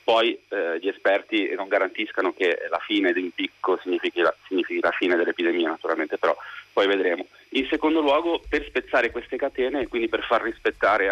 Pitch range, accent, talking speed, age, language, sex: 300-375 Hz, native, 180 wpm, 30-49, Italian, male